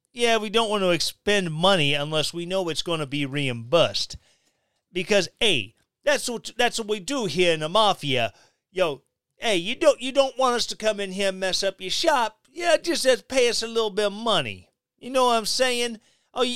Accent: American